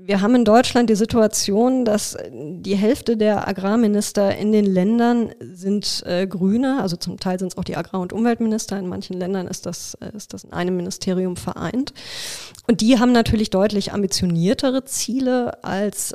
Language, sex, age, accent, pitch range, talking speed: German, female, 20-39, German, 185-215 Hz, 165 wpm